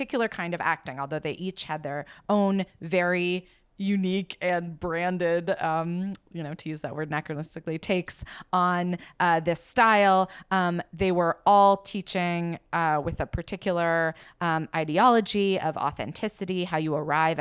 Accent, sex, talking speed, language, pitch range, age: American, female, 145 wpm, English, 160-190 Hz, 20-39